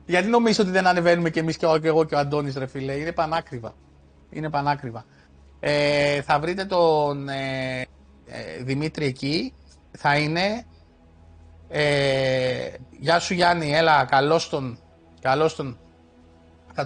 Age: 30-49